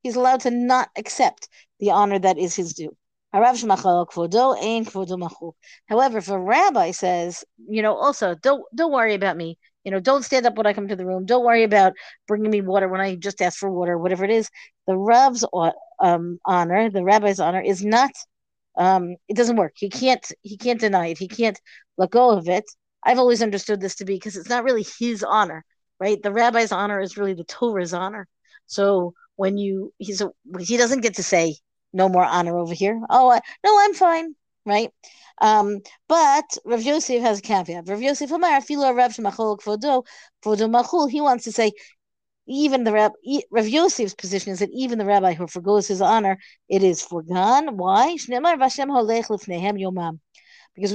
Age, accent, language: 50-69, American, English